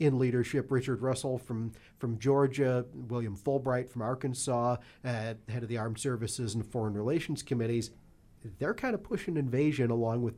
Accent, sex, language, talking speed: American, male, English, 160 wpm